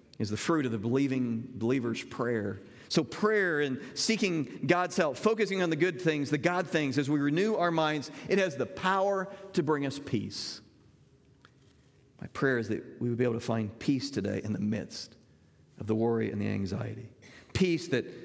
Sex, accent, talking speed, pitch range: male, American, 190 wpm, 115-160 Hz